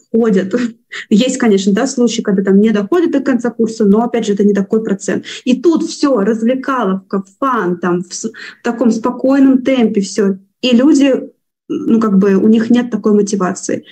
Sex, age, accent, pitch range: female, 20-39, native, 200-240 Hz